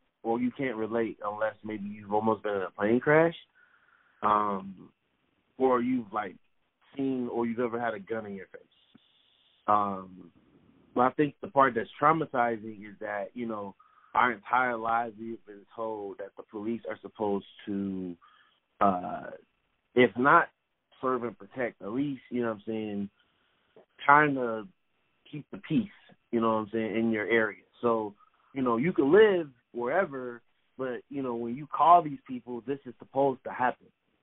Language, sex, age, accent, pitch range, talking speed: English, male, 20-39, American, 110-135 Hz, 175 wpm